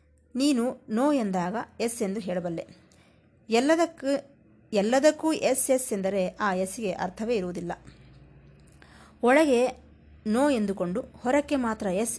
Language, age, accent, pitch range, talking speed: Kannada, 30-49, native, 185-245 Hz, 105 wpm